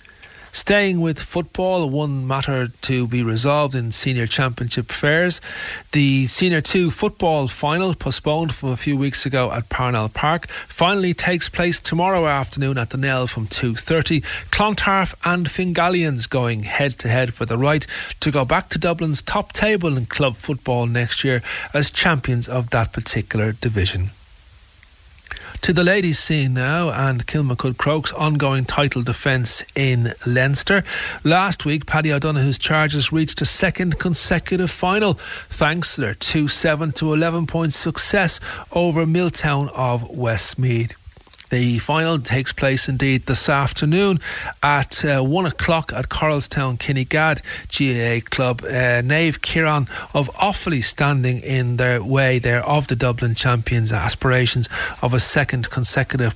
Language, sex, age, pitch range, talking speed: English, male, 40-59, 120-160 Hz, 140 wpm